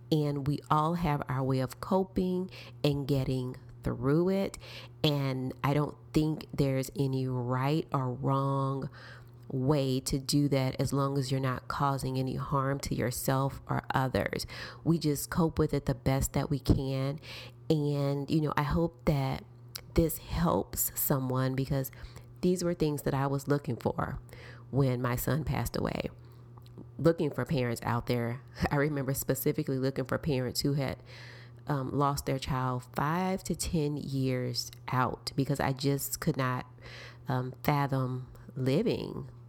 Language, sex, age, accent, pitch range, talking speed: English, female, 30-49, American, 125-145 Hz, 150 wpm